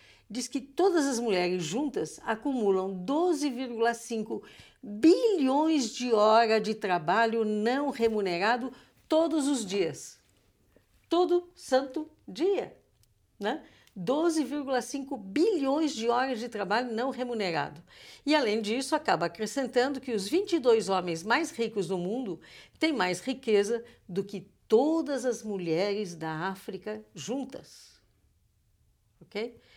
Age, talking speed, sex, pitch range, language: 60-79, 110 wpm, female, 195-280 Hz, Portuguese